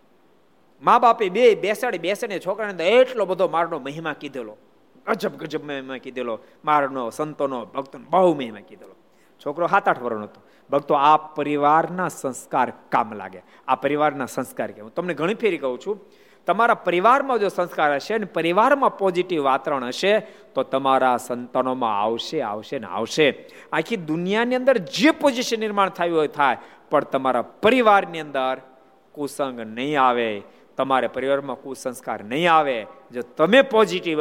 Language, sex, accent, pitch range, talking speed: Gujarati, male, native, 135-210 Hz, 90 wpm